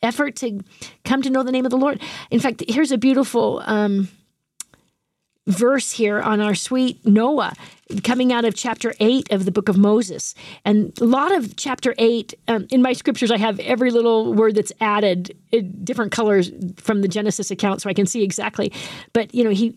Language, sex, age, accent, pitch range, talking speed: English, female, 40-59, American, 200-250 Hz, 190 wpm